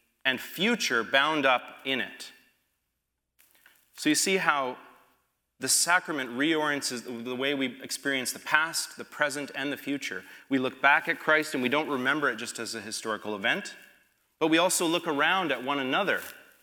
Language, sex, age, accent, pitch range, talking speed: English, male, 30-49, American, 115-150 Hz, 170 wpm